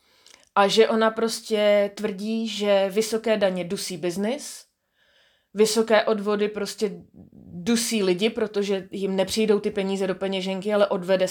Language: Czech